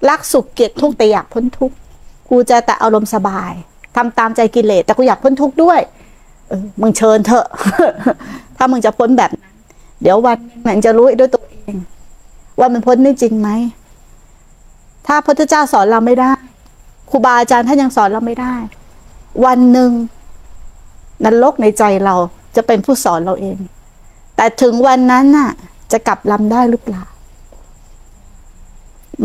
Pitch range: 215-270 Hz